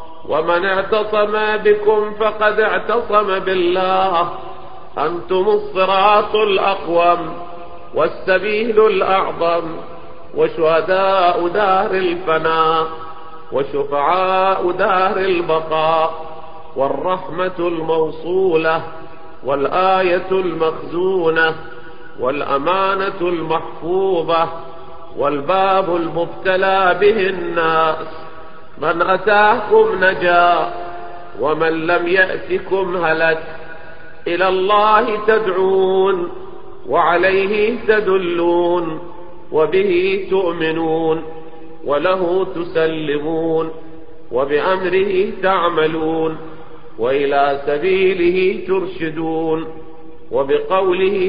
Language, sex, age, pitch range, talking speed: Persian, male, 50-69, 160-190 Hz, 55 wpm